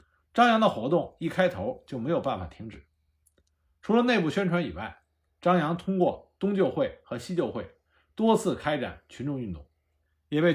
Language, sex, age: Chinese, male, 50-69